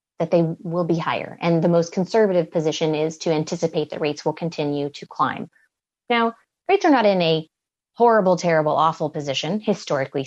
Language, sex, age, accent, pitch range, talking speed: English, female, 30-49, American, 160-215 Hz, 175 wpm